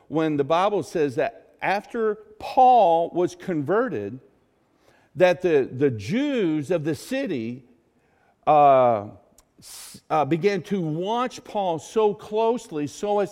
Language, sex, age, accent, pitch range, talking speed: English, male, 50-69, American, 155-215 Hz, 115 wpm